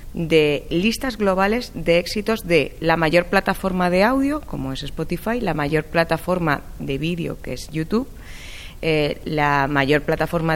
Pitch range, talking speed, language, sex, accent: 150-185 Hz, 150 wpm, Spanish, female, Spanish